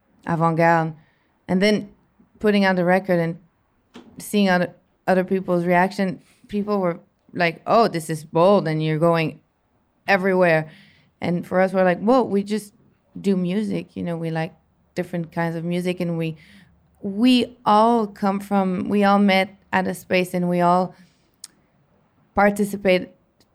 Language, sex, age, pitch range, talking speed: English, female, 20-39, 175-200 Hz, 150 wpm